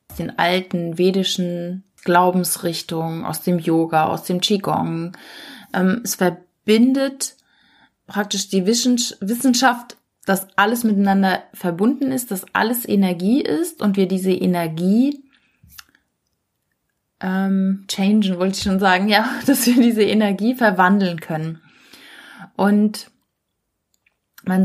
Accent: German